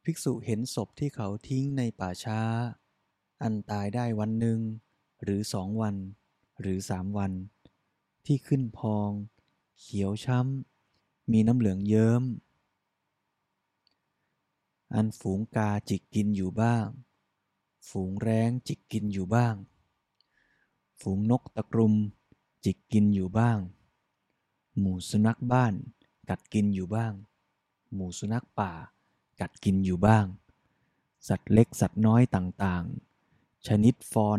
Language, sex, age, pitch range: Thai, male, 20-39, 100-120 Hz